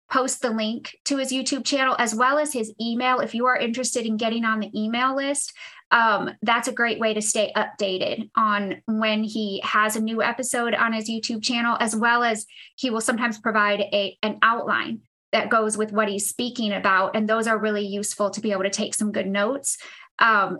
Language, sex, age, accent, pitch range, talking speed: English, female, 20-39, American, 215-255 Hz, 205 wpm